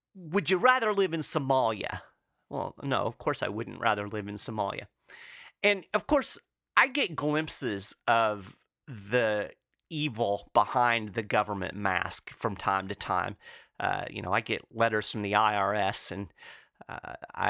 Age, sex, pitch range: 30-49, male, 105-155 Hz